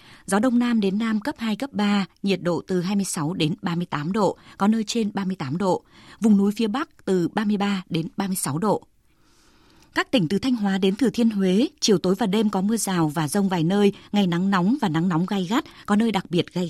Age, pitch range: 20-39, 180-220 Hz